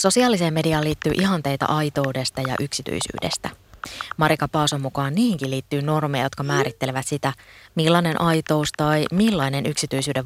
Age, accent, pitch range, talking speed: 20-39, native, 135-165 Hz, 125 wpm